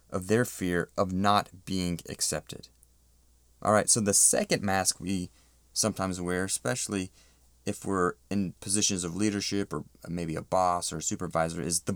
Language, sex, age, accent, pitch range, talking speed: English, male, 30-49, American, 90-115 Hz, 155 wpm